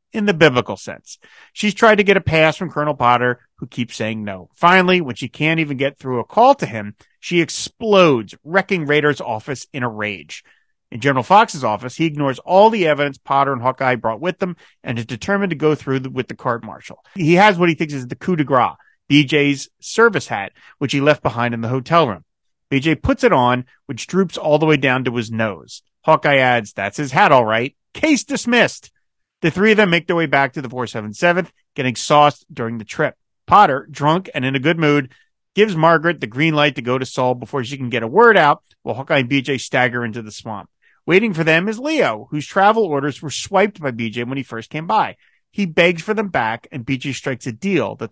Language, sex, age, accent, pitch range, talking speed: English, male, 40-59, American, 120-170 Hz, 225 wpm